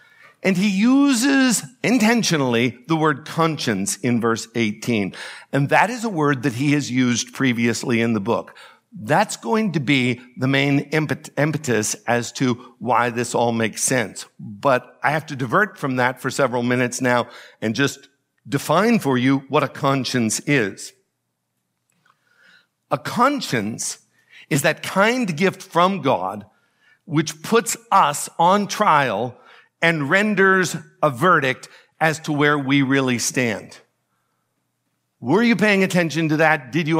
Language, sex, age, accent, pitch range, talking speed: English, male, 60-79, American, 125-175 Hz, 145 wpm